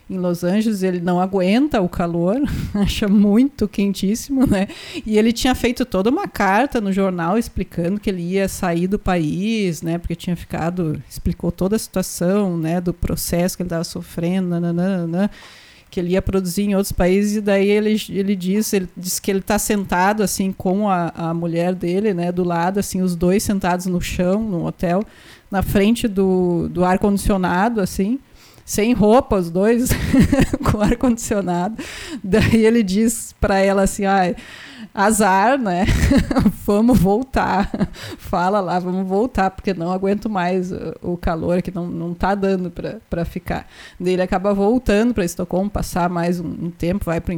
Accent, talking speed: Brazilian, 165 wpm